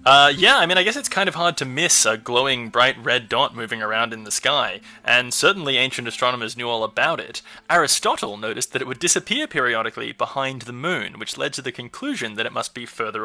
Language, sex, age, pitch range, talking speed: English, male, 20-39, 120-165 Hz, 225 wpm